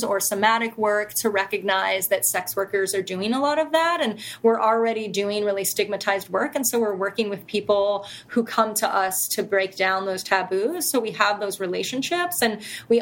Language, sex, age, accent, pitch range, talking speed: English, female, 30-49, American, 195-230 Hz, 200 wpm